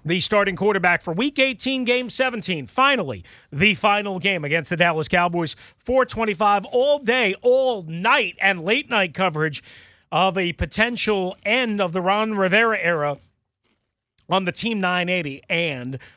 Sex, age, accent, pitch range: male, 40-59, American, 160-225 Hz